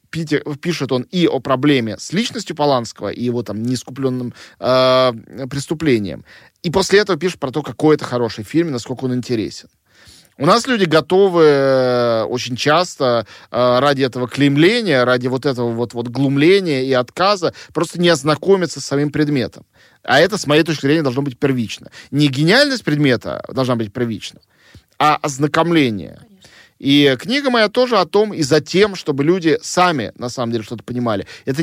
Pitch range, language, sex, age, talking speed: 125-170 Hz, Russian, male, 20-39, 165 wpm